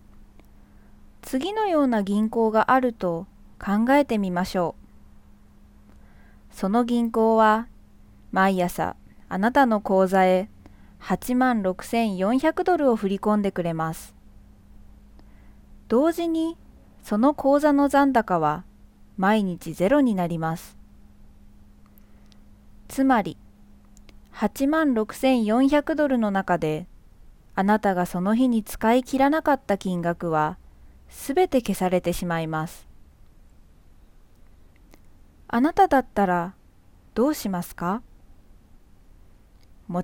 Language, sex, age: Japanese, female, 20-39